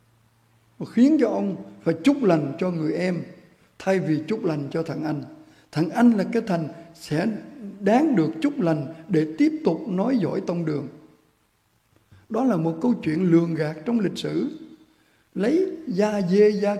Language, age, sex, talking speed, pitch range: Vietnamese, 60-79, male, 170 wpm, 165-225 Hz